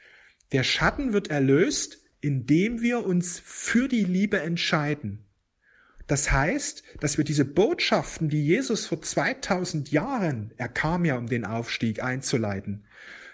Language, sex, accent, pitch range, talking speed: German, male, German, 135-190 Hz, 130 wpm